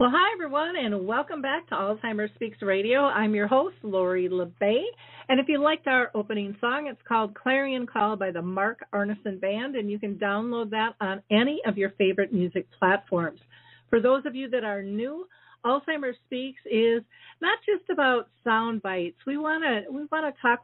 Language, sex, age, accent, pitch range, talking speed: English, female, 50-69, American, 205-255 Hz, 185 wpm